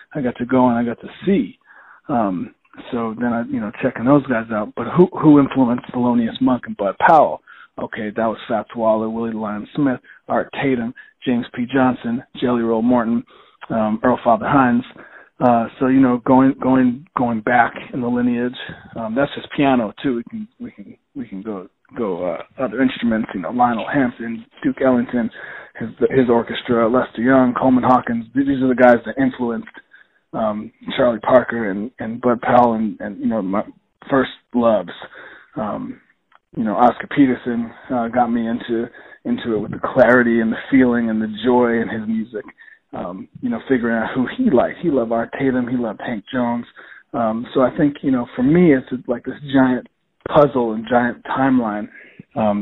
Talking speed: 185 wpm